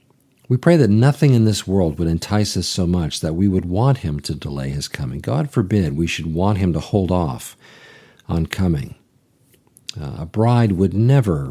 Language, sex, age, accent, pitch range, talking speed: English, male, 50-69, American, 80-105 Hz, 195 wpm